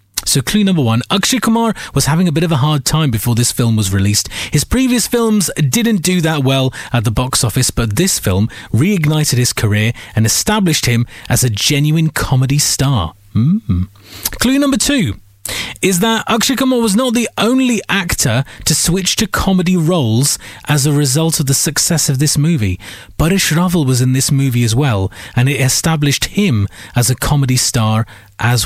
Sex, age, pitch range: male, 30-49, 120-180 Hz